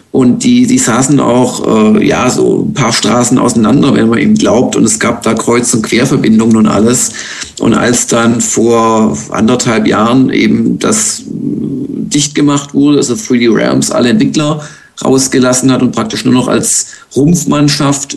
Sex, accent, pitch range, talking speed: male, German, 120-145 Hz, 165 wpm